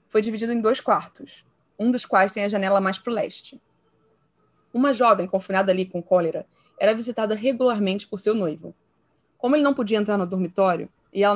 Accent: Brazilian